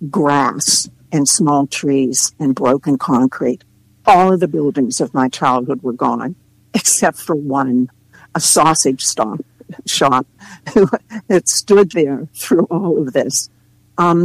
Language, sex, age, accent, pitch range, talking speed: English, female, 60-79, American, 140-180 Hz, 130 wpm